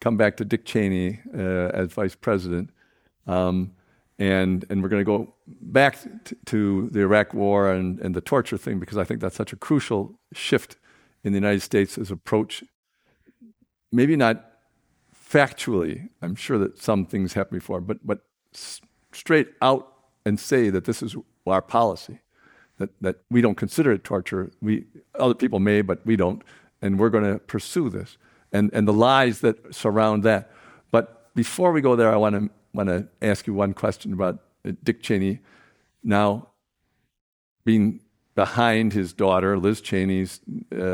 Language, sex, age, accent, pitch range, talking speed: English, male, 50-69, American, 95-115 Hz, 165 wpm